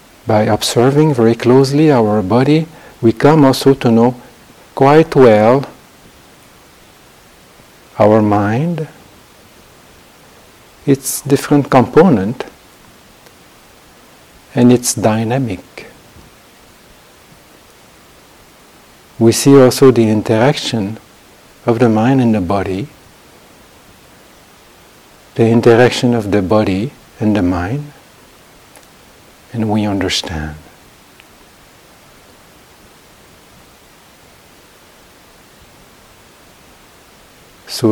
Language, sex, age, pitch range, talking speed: English, male, 50-69, 100-135 Hz, 70 wpm